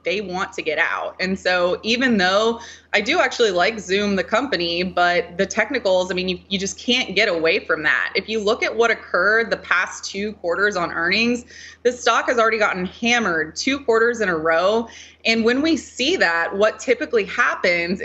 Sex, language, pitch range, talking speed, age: female, English, 190-235 Hz, 200 wpm, 20-39